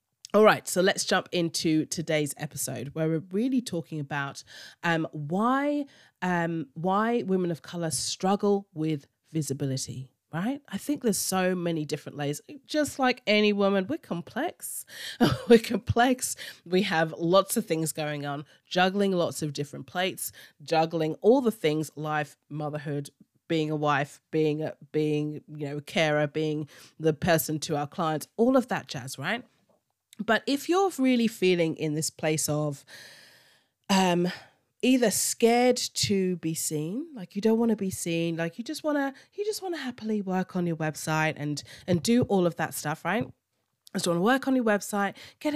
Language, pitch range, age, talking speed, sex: English, 155-210 Hz, 30-49, 175 wpm, female